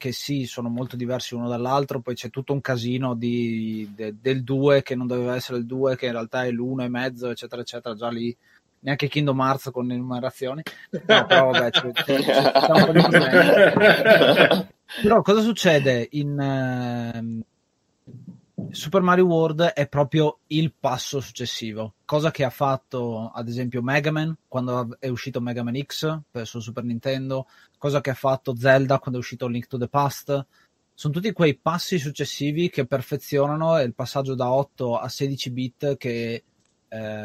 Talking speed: 170 wpm